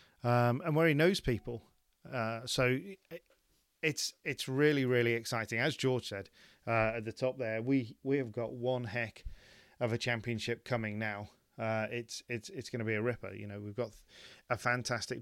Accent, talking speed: British, 185 wpm